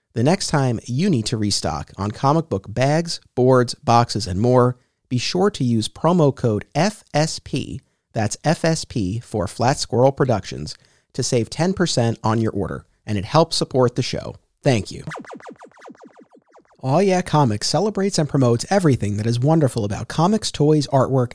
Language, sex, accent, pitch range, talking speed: English, male, American, 115-160 Hz, 155 wpm